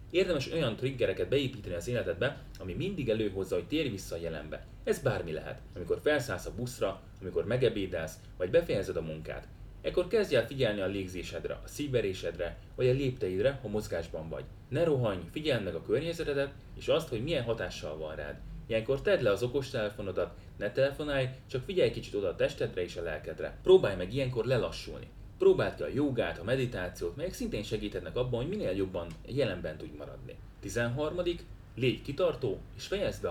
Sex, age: male, 30-49